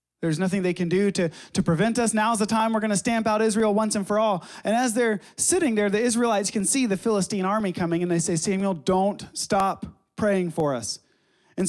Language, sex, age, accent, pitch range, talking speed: English, male, 30-49, American, 180-230 Hz, 230 wpm